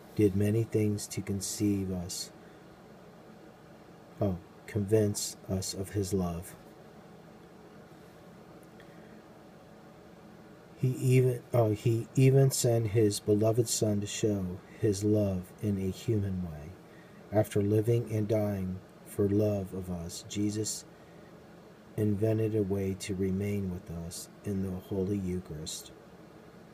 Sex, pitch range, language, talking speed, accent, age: male, 95-110 Hz, English, 110 wpm, American, 40-59